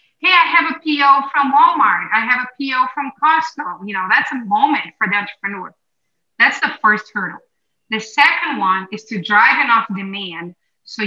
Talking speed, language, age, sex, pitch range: 185 wpm, English, 30-49, female, 200-265 Hz